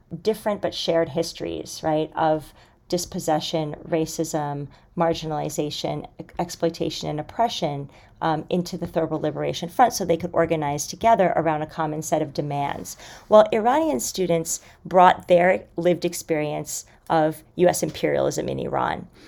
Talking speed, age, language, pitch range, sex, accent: 130 wpm, 40-59, English, 165-195 Hz, female, American